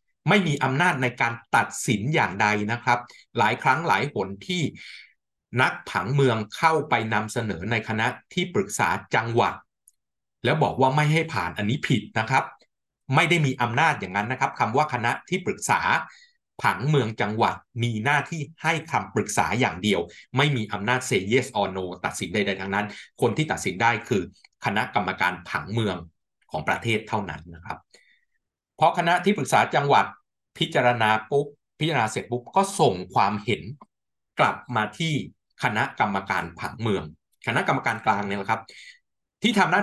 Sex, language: male, Thai